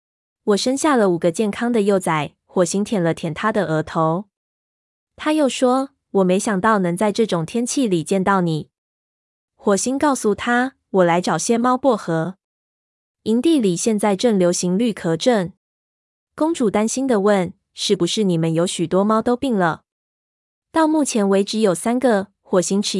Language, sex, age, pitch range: Chinese, female, 20-39, 175-225 Hz